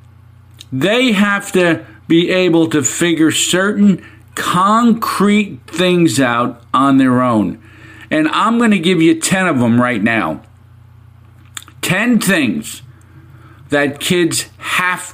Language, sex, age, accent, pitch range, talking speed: English, male, 50-69, American, 110-150 Hz, 120 wpm